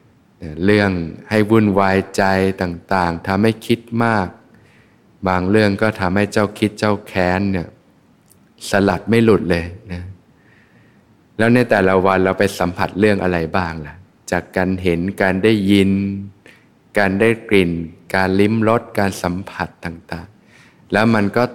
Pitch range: 90-105 Hz